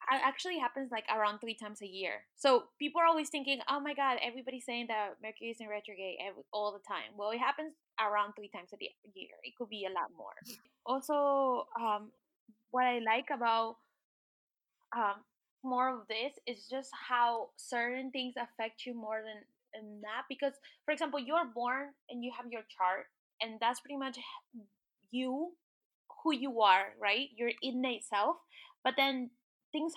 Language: English